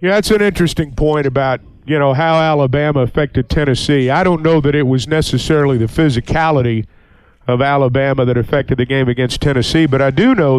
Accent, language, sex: American, English, male